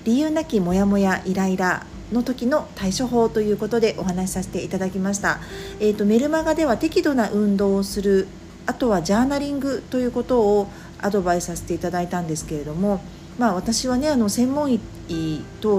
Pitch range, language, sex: 160-225 Hz, Japanese, female